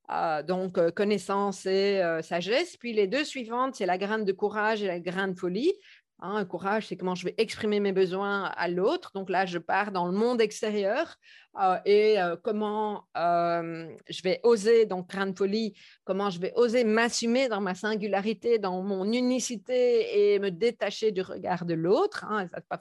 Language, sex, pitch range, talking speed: French, female, 195-250 Hz, 190 wpm